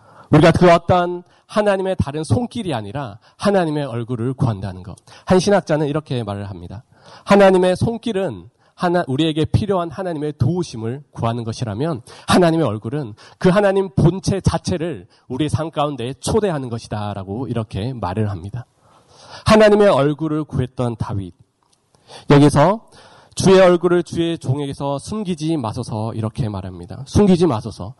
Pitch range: 115-175 Hz